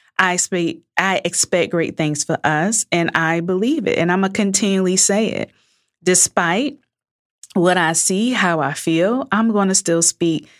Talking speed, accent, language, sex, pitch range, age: 165 wpm, American, English, female, 165-230 Hz, 20-39